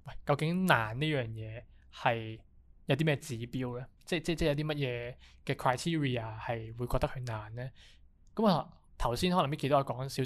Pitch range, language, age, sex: 120-150 Hz, Chinese, 20-39, male